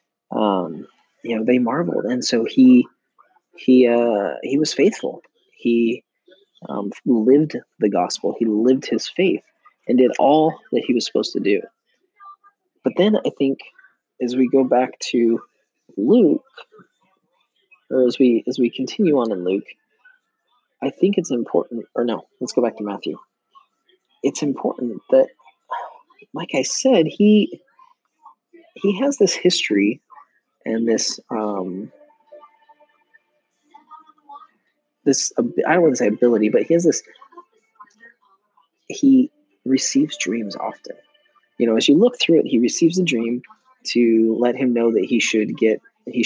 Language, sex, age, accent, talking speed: English, male, 30-49, American, 145 wpm